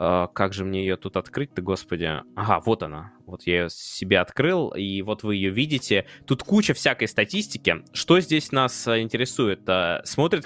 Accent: native